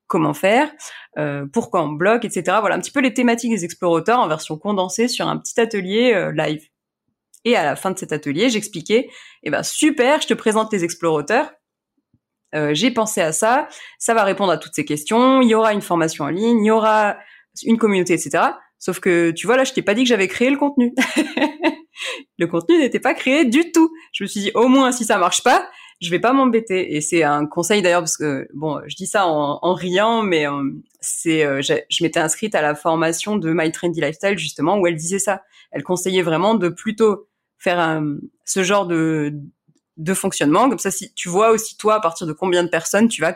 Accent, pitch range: French, 160-230 Hz